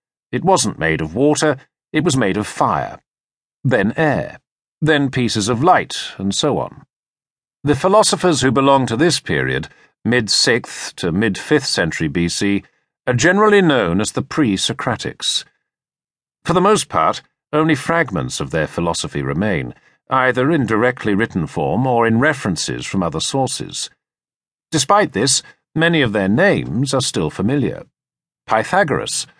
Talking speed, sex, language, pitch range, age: 140 wpm, male, English, 100-155 Hz, 50-69